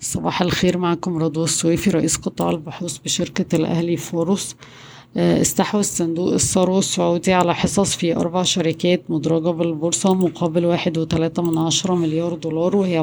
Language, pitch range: Arabic, 160-180 Hz